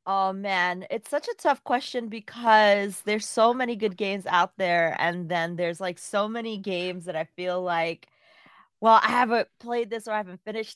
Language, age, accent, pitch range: English, 30-49, American, 175-215 Hz